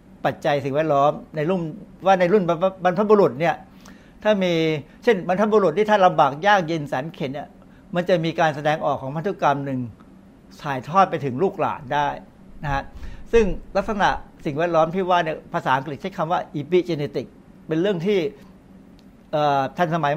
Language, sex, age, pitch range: Thai, male, 60-79, 140-185 Hz